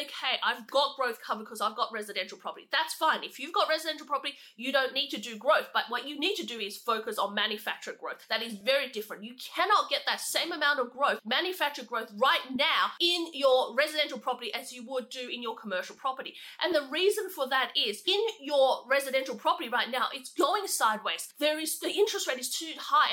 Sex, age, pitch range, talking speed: female, 30-49, 245-315 Hz, 220 wpm